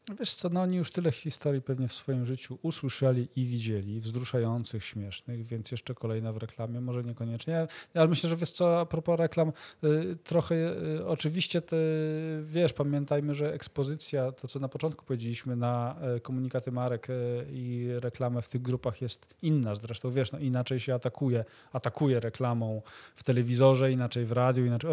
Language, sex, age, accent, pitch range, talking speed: Polish, male, 40-59, native, 120-140 Hz, 165 wpm